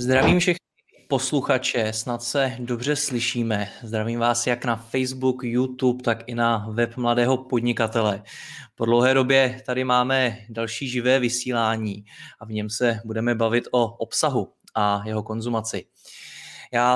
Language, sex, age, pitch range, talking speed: Czech, male, 20-39, 110-125 Hz, 140 wpm